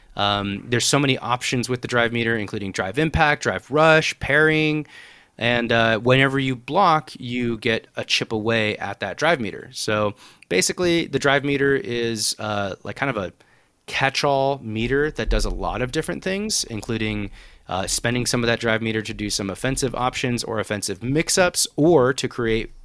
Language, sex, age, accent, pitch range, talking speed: English, male, 30-49, American, 110-140 Hz, 180 wpm